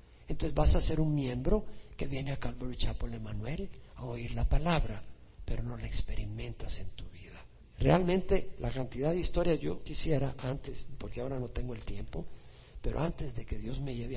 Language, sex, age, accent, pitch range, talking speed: Spanish, male, 50-69, Mexican, 105-135 Hz, 185 wpm